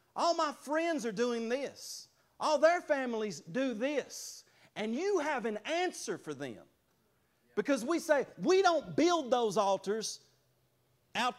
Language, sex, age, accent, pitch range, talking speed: English, male, 40-59, American, 155-230 Hz, 140 wpm